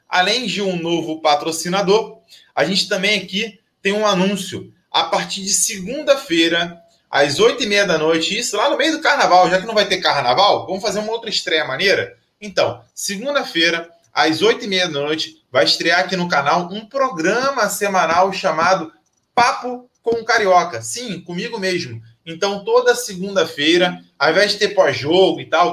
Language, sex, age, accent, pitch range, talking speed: Portuguese, male, 20-39, Brazilian, 170-210 Hz, 170 wpm